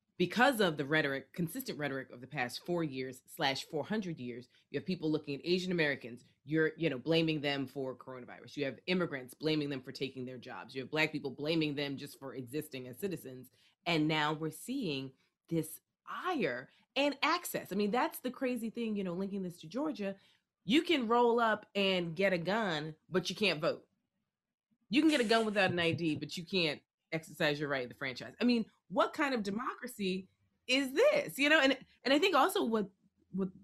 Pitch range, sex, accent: 155-230 Hz, female, American